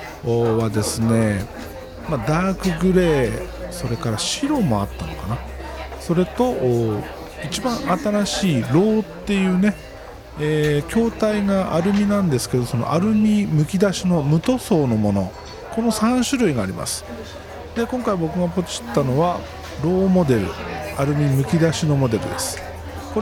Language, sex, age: Japanese, male, 50-69